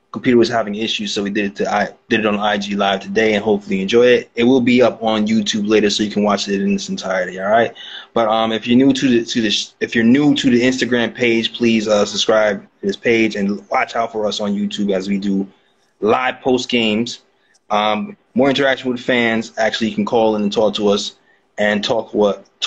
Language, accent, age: English, American, 20-39